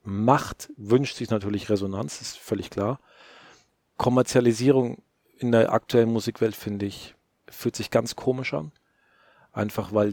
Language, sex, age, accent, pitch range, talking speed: German, male, 40-59, German, 105-125 Hz, 130 wpm